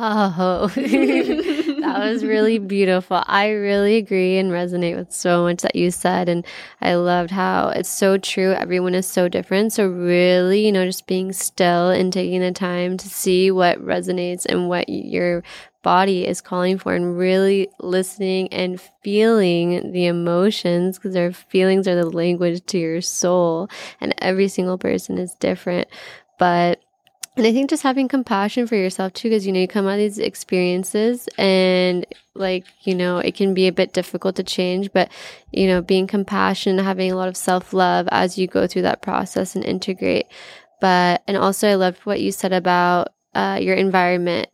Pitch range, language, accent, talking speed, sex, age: 180-200 Hz, English, American, 180 wpm, female, 20-39